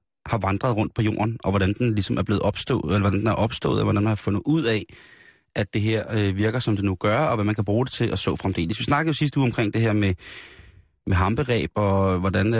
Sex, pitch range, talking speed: male, 100-115 Hz, 265 wpm